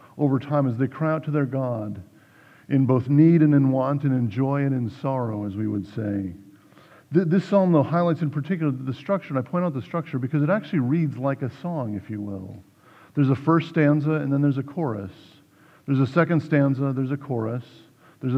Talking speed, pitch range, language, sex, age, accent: 220 wpm, 125-155 Hz, English, male, 50-69, American